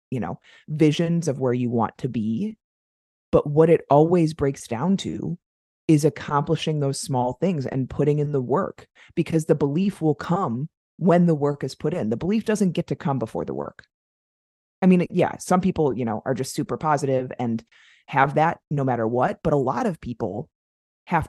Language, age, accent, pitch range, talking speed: English, 30-49, American, 125-160 Hz, 195 wpm